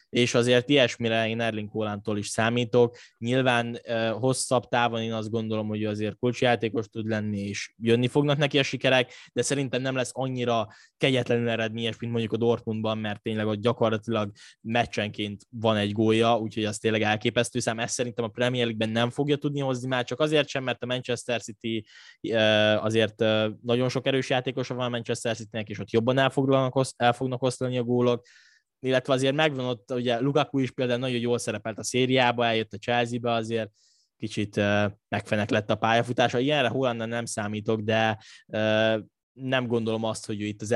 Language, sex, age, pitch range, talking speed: Hungarian, male, 10-29, 105-125 Hz, 170 wpm